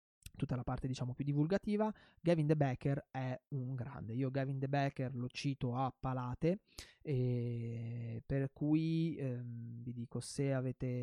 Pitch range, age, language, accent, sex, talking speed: 130-150 Hz, 20-39, Italian, native, male, 150 wpm